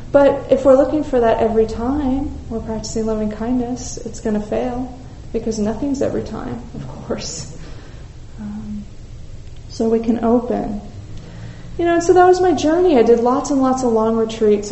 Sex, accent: female, American